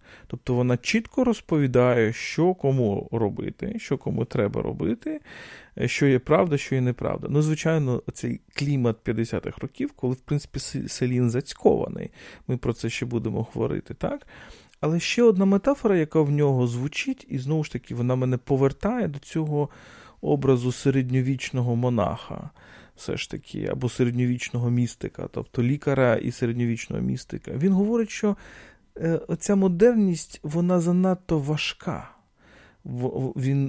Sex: male